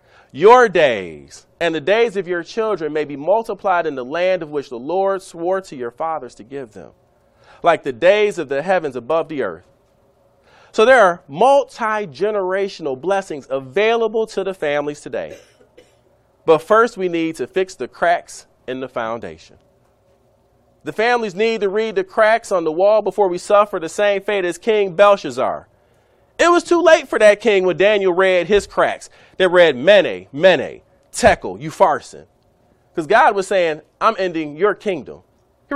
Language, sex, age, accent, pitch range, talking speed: English, male, 40-59, American, 180-225 Hz, 170 wpm